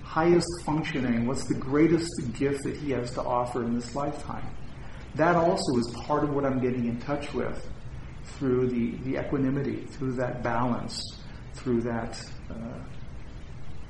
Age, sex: 40-59, male